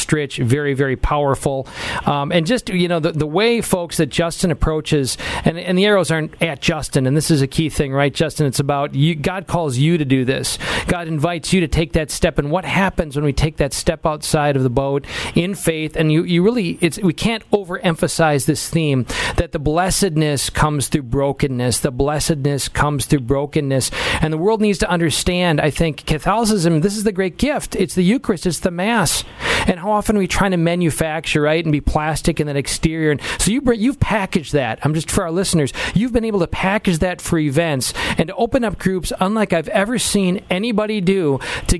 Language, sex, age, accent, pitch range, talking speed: English, male, 40-59, American, 150-195 Hz, 210 wpm